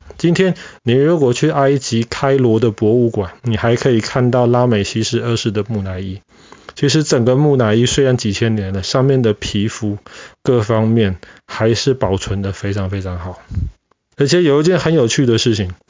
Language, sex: Chinese, male